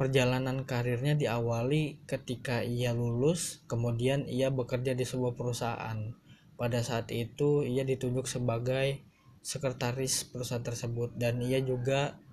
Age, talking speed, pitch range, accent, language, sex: 20-39, 115 wpm, 120-140 Hz, native, Indonesian, male